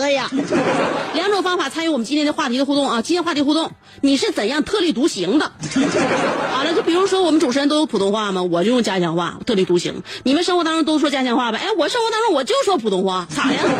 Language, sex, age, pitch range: Chinese, female, 30-49, 195-300 Hz